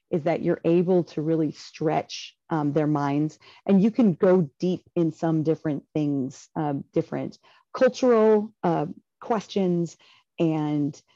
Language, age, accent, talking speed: English, 30-49, American, 135 wpm